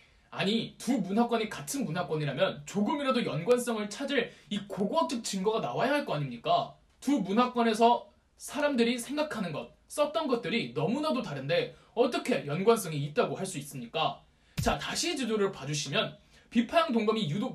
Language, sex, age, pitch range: Korean, male, 20-39, 195-270 Hz